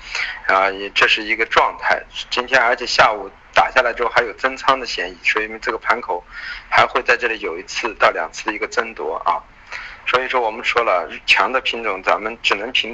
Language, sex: Chinese, male